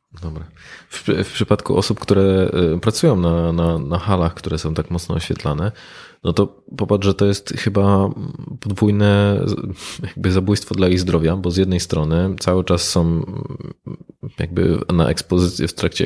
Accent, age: native, 20-39